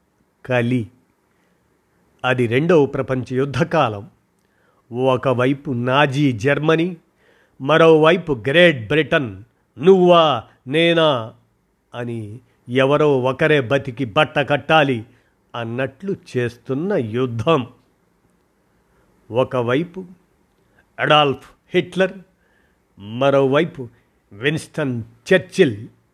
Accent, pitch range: native, 125-165 Hz